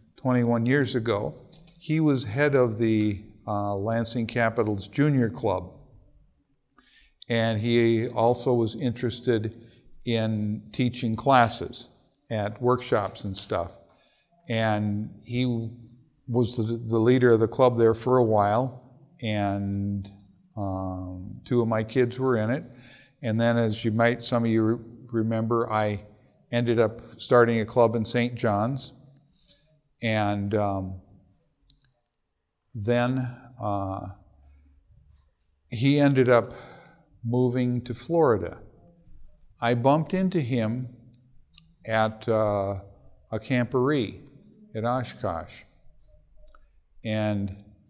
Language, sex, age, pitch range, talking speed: English, male, 50-69, 105-125 Hz, 110 wpm